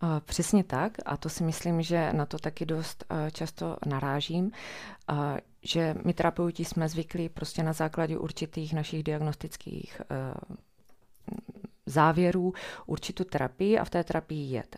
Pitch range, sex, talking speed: 150-175 Hz, female, 130 wpm